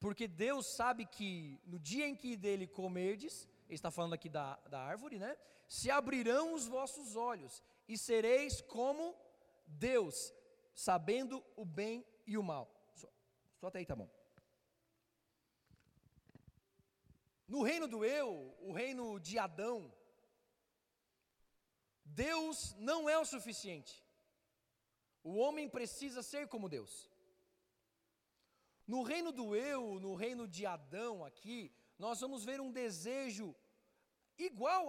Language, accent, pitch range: Portuguese, Brazilian, 200-285 Hz